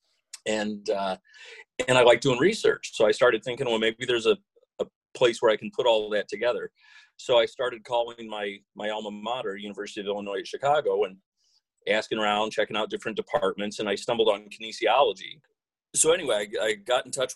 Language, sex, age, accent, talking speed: English, male, 40-59, American, 195 wpm